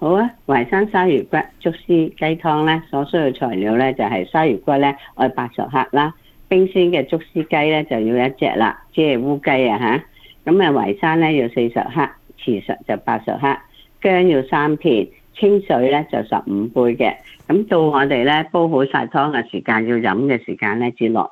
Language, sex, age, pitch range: Chinese, female, 50-69, 130-170 Hz